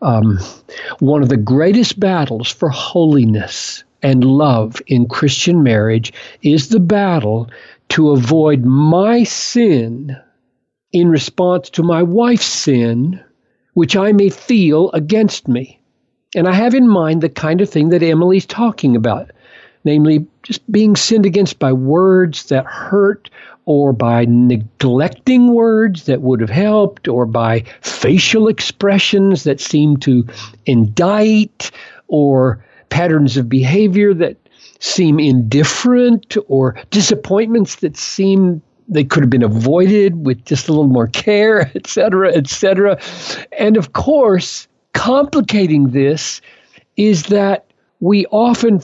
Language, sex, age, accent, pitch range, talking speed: English, male, 60-79, American, 135-200 Hz, 125 wpm